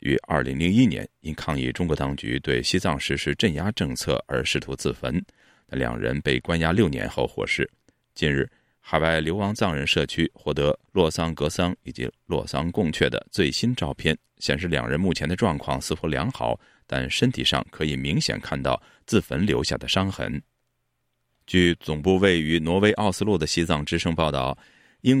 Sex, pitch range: male, 70-95 Hz